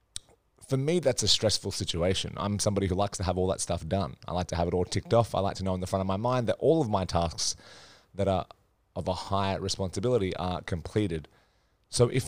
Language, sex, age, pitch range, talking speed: English, male, 20-39, 90-110 Hz, 240 wpm